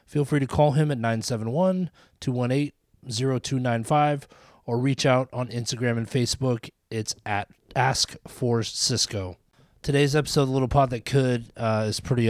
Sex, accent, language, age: male, American, English, 20-39